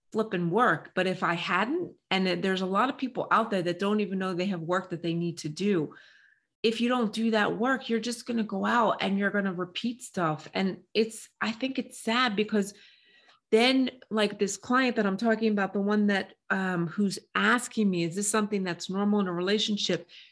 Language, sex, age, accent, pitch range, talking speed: English, female, 30-49, American, 185-225 Hz, 220 wpm